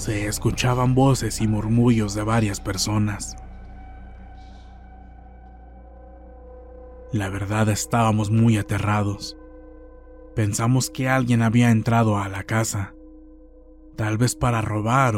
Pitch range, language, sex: 100-115 Hz, Spanish, male